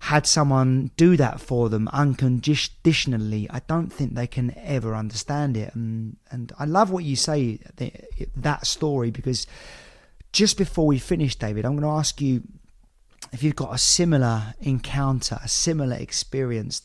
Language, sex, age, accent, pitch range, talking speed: English, male, 30-49, British, 115-150 Hz, 155 wpm